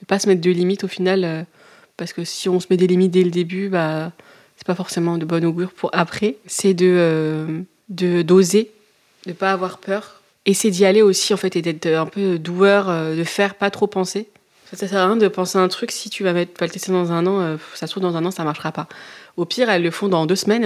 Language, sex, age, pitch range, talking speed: French, female, 20-39, 165-195 Hz, 275 wpm